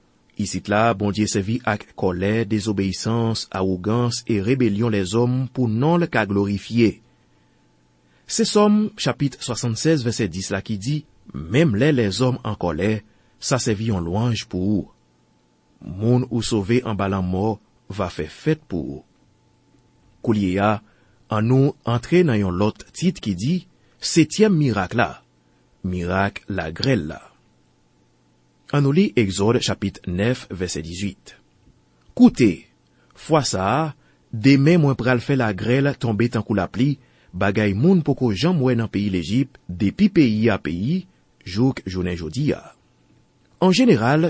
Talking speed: 135 wpm